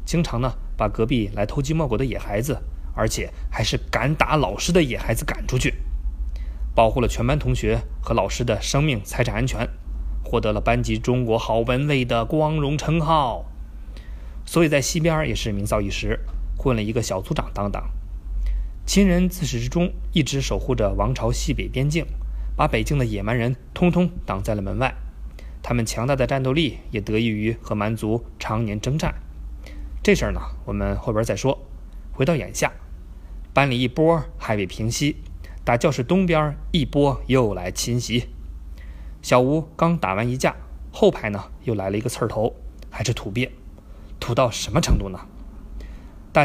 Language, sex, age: Chinese, male, 20-39